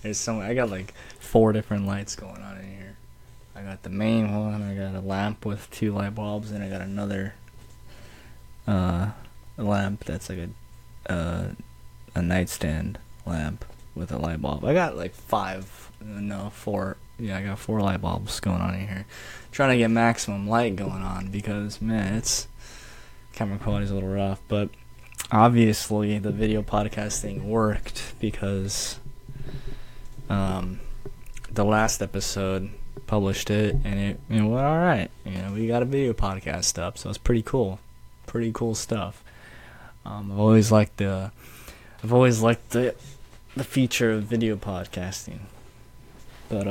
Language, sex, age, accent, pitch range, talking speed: English, male, 20-39, American, 100-115 Hz, 155 wpm